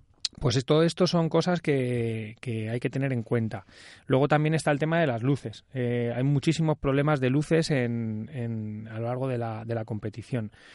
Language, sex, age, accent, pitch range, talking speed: Spanish, male, 30-49, Spanish, 120-150 Hz, 205 wpm